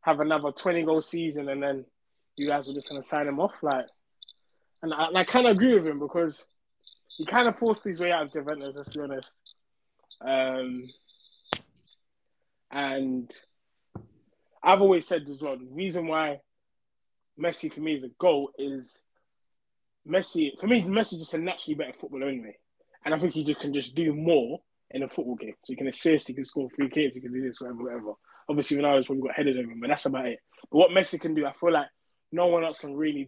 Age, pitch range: 20-39, 135-170 Hz